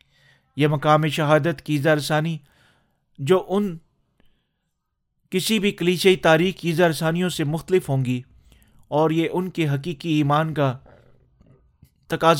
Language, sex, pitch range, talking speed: Urdu, male, 140-185 Hz, 125 wpm